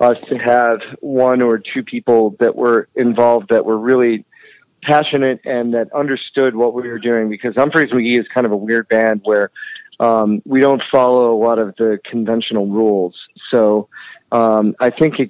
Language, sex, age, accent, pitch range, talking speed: English, male, 30-49, American, 105-120 Hz, 180 wpm